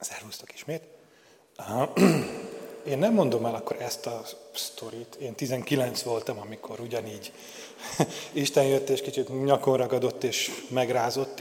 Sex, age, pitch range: male, 30-49, 125-160 Hz